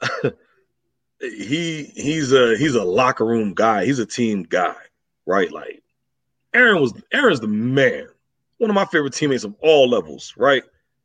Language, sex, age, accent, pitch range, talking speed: English, male, 30-49, American, 150-195 Hz, 150 wpm